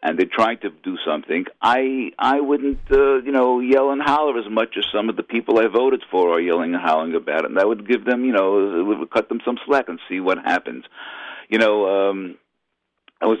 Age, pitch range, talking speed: 50-69, 105-145 Hz, 235 wpm